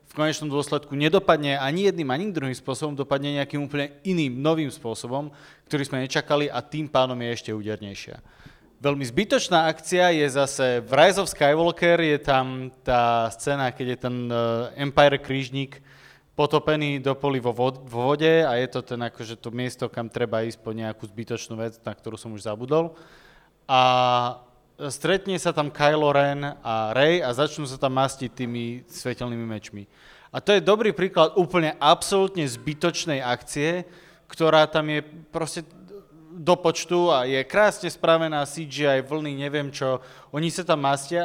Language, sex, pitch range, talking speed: Slovak, male, 130-165 Hz, 160 wpm